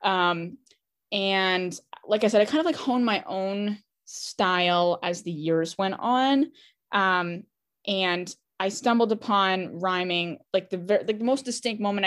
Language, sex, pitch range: English, female, 175-215 Hz